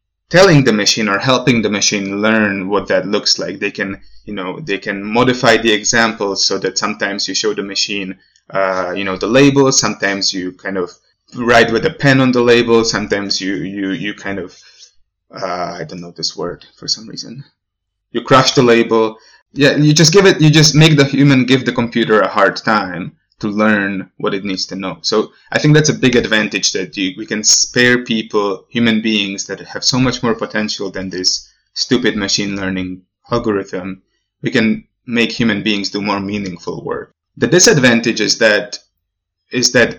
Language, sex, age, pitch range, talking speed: Slovak, male, 20-39, 100-120 Hz, 190 wpm